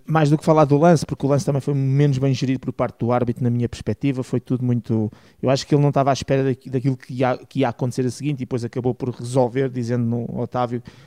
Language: Portuguese